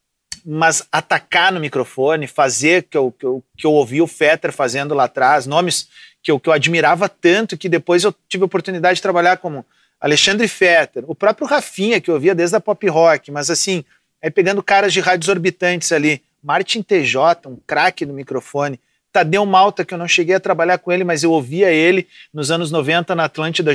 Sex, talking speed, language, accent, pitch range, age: male, 200 wpm, Portuguese, Brazilian, 160-205 Hz, 40-59